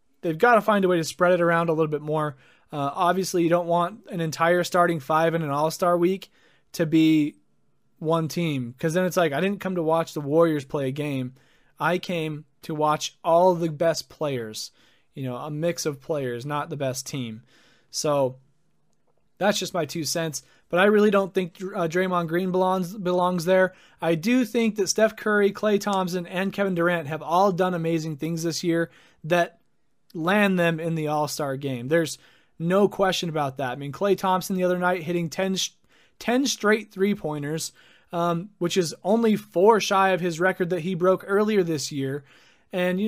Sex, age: male, 20-39